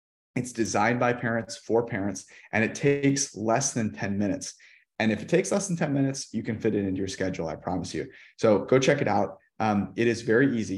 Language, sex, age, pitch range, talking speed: English, male, 30-49, 100-125 Hz, 230 wpm